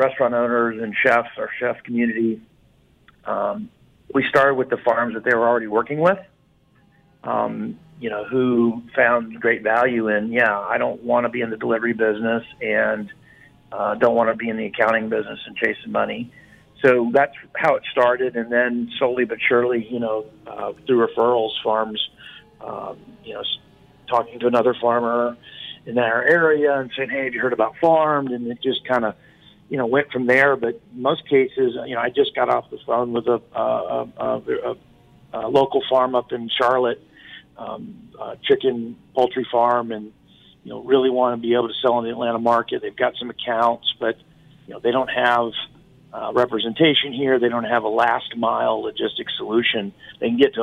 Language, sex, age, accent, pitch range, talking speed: English, male, 50-69, American, 115-130 Hz, 190 wpm